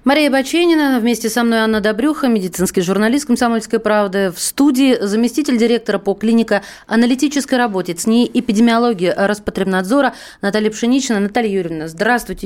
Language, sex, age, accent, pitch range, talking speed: Russian, female, 30-49, native, 195-245 Hz, 135 wpm